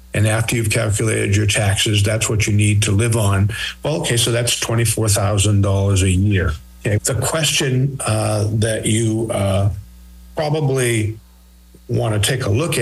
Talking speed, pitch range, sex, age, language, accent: 150 wpm, 105-120 Hz, male, 50-69, English, American